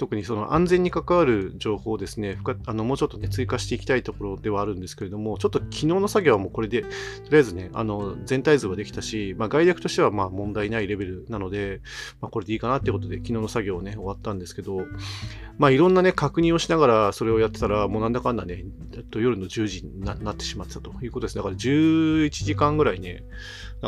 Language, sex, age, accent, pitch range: Japanese, male, 40-59, native, 100-145 Hz